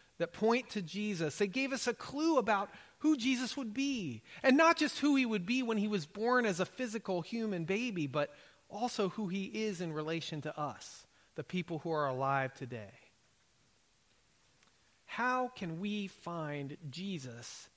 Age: 40-59